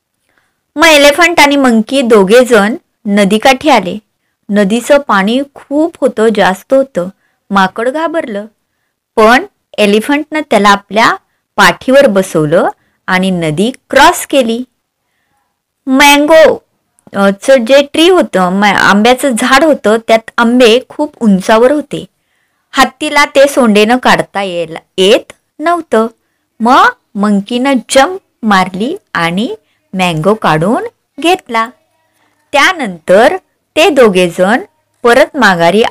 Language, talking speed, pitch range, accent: Marathi, 95 wpm, 205-280 Hz, native